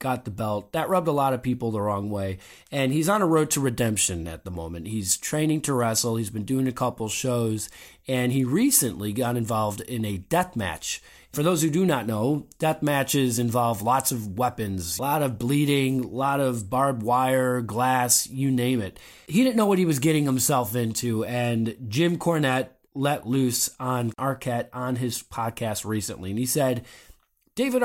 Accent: American